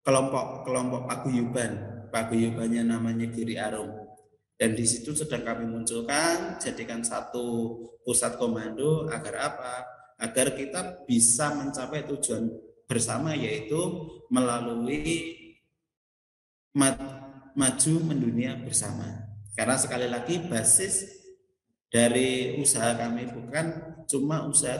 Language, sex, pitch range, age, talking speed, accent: Indonesian, male, 115-145 Hz, 30-49, 100 wpm, native